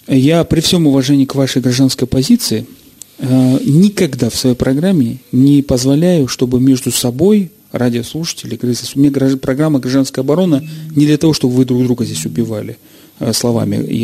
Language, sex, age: Russian, male, 30-49